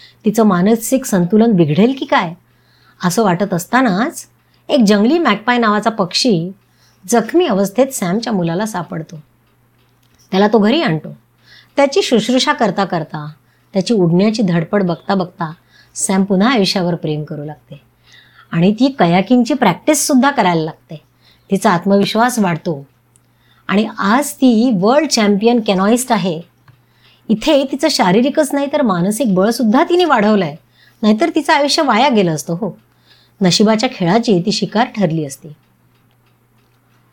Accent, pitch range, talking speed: native, 165-240 Hz, 115 wpm